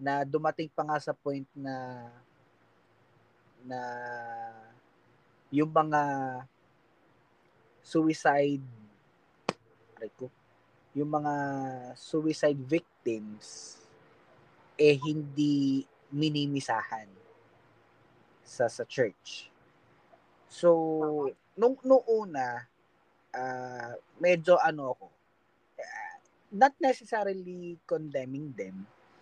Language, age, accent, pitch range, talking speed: English, 20-39, Filipino, 125-175 Hz, 70 wpm